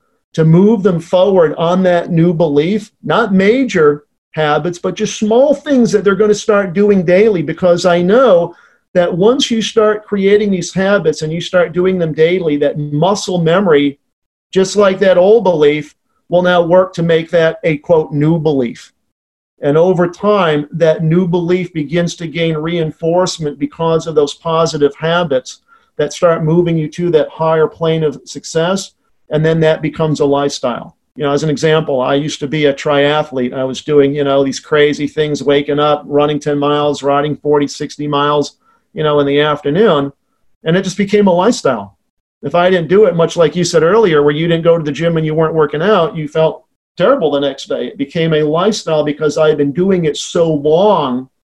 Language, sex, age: English, male, 50-69